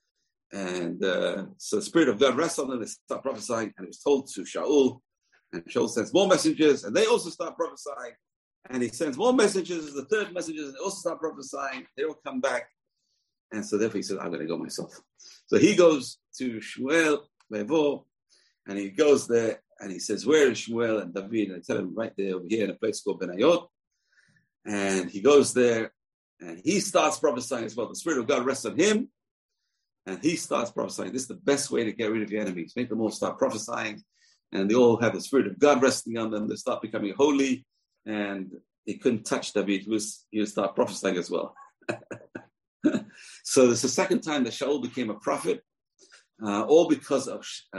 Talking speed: 210 wpm